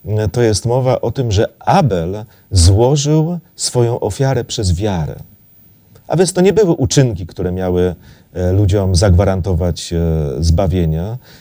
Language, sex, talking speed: Polish, male, 120 wpm